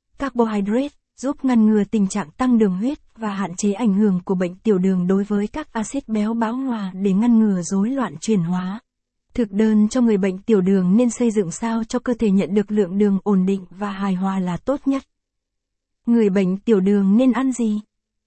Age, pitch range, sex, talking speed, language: 20-39, 195-235 Hz, female, 215 wpm, Vietnamese